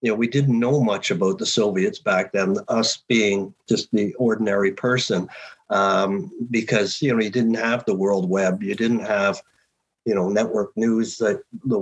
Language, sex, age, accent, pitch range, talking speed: English, male, 50-69, American, 105-130 Hz, 180 wpm